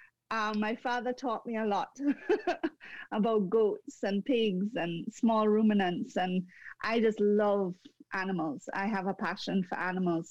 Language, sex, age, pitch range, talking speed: English, female, 30-49, 205-250 Hz, 145 wpm